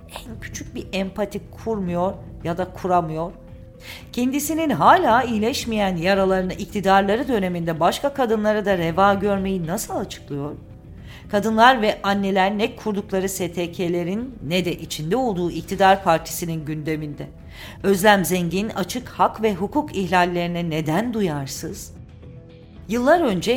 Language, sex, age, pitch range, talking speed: Turkish, female, 50-69, 155-215 Hz, 110 wpm